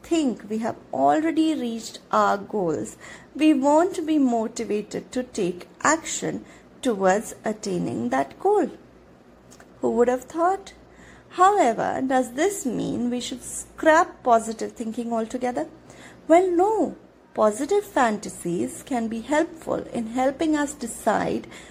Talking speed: 120 wpm